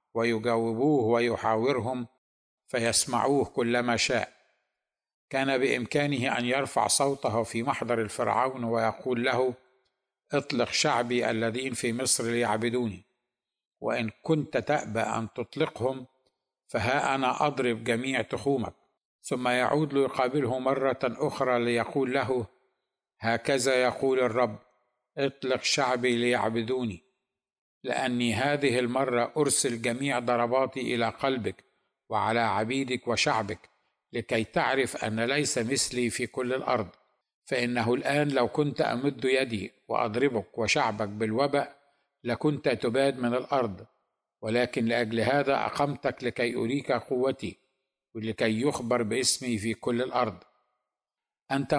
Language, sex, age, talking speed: Arabic, male, 60-79, 105 wpm